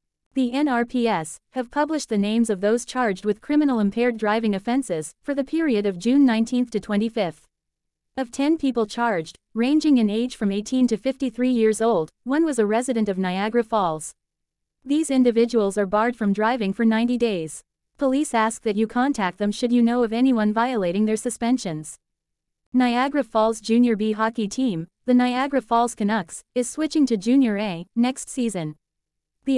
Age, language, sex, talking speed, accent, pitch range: 30-49, English, female, 160 wpm, American, 205-250 Hz